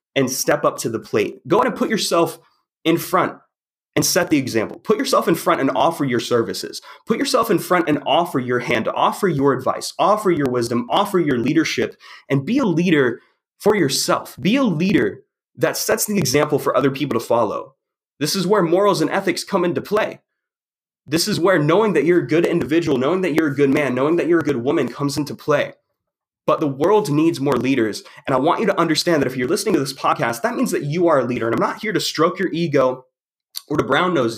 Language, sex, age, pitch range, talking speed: English, male, 20-39, 140-195 Hz, 230 wpm